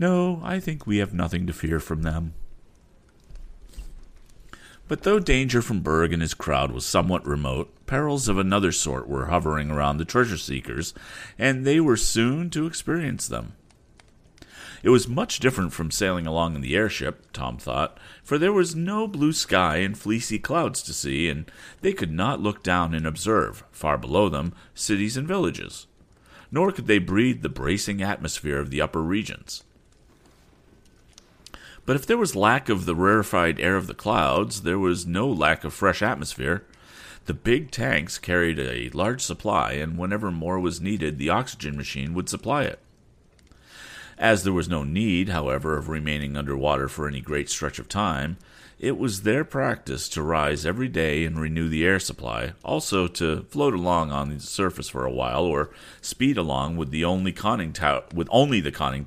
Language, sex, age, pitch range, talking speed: English, male, 40-59, 75-110 Hz, 170 wpm